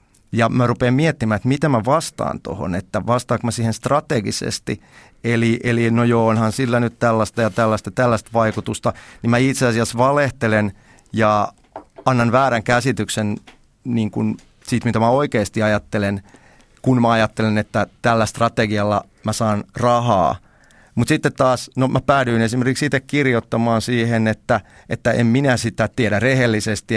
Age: 30-49